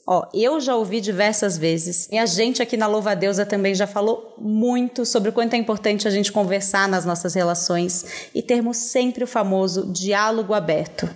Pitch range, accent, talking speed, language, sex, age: 190-245 Hz, Brazilian, 200 wpm, Portuguese, female, 20-39